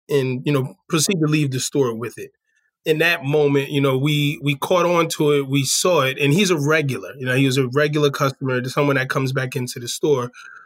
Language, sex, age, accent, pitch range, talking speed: English, male, 20-39, American, 135-160 Hz, 235 wpm